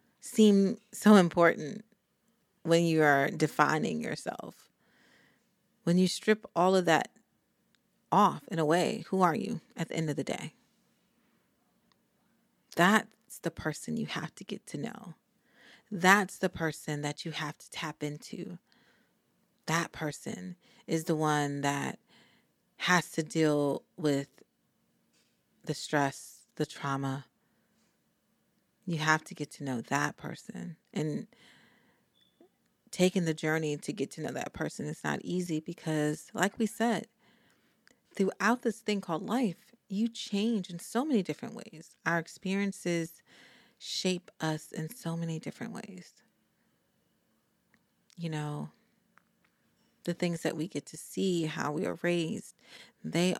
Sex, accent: female, American